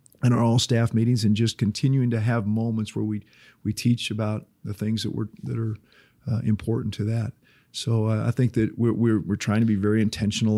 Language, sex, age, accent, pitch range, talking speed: English, male, 40-59, American, 105-130 Hz, 220 wpm